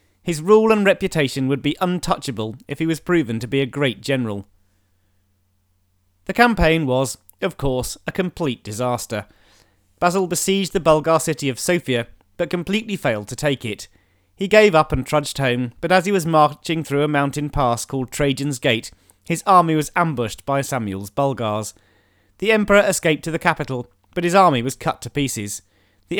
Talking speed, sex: 175 wpm, male